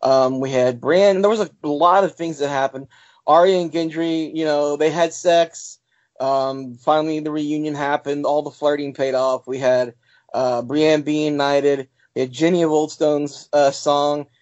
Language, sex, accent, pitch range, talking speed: English, male, American, 140-170 Hz, 180 wpm